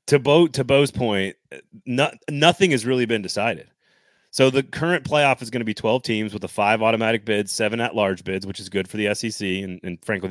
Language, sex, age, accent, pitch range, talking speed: English, male, 30-49, American, 105-145 Hz, 220 wpm